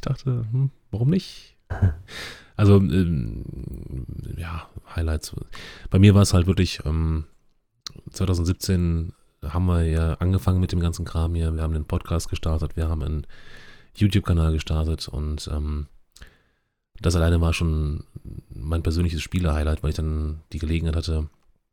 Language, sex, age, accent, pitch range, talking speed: German, male, 30-49, German, 80-90 Hz, 145 wpm